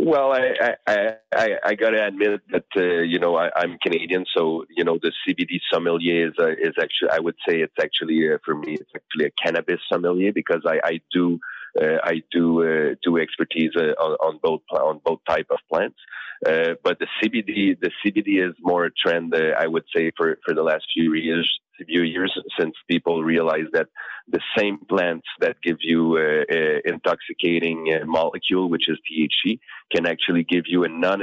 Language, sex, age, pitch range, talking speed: English, male, 30-49, 80-115 Hz, 195 wpm